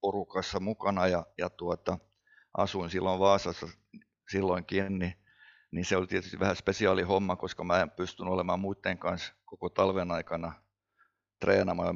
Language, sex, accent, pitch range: Finnish, male, native, 85-95 Hz